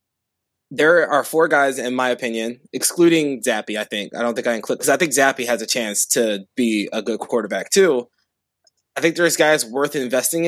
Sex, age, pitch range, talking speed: male, 20-39, 120-160 Hz, 200 wpm